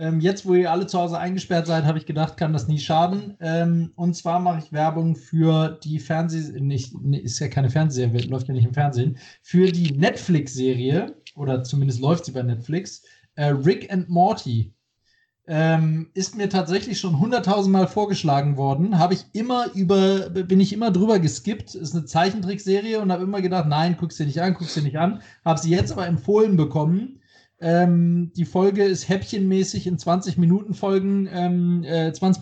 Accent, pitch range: German, 155-185 Hz